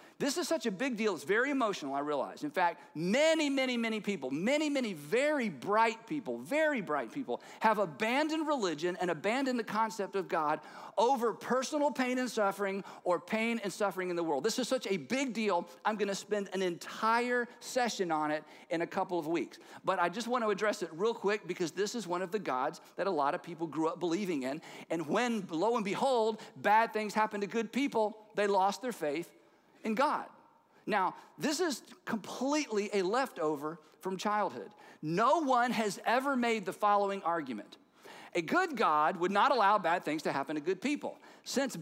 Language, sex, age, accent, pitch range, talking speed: English, male, 50-69, American, 190-255 Hz, 195 wpm